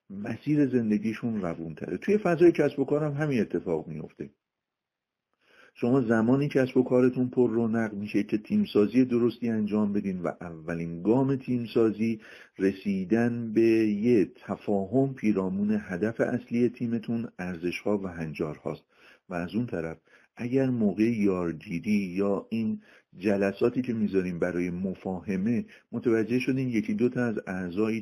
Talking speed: 130 wpm